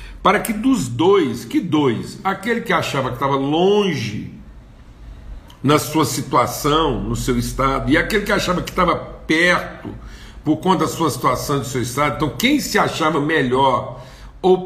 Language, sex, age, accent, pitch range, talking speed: Portuguese, male, 60-79, Brazilian, 125-195 Hz, 160 wpm